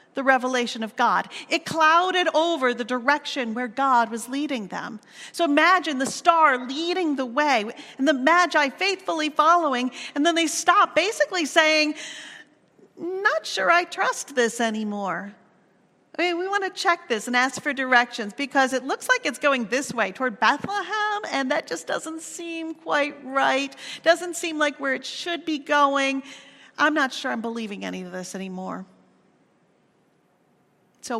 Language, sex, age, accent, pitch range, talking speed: English, female, 40-59, American, 235-300 Hz, 160 wpm